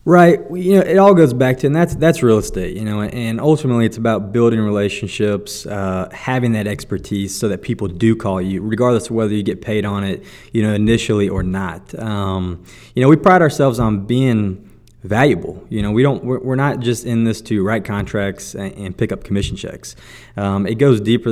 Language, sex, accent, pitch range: English, male, American, 100-120 Hz